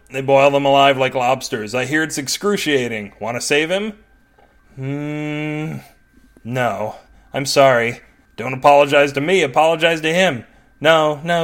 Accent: American